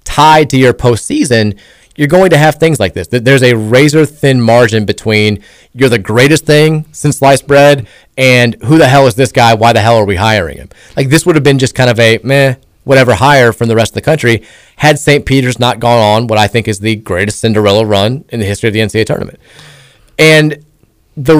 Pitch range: 115-145 Hz